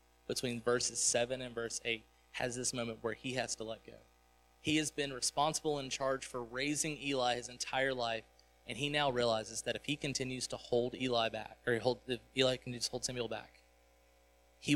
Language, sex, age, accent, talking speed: English, male, 20-39, American, 205 wpm